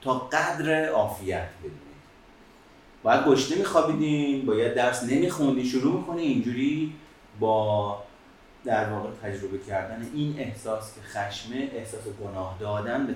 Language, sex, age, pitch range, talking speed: Persian, male, 30-49, 105-150 Hz, 125 wpm